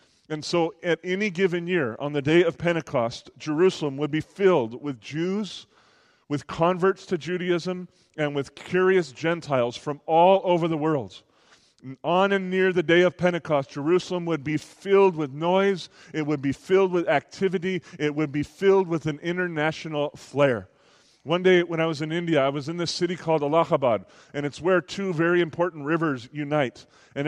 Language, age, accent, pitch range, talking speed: English, 30-49, American, 140-175 Hz, 175 wpm